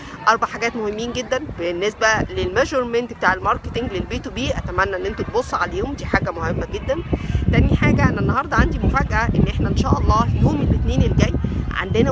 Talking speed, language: 175 wpm, Arabic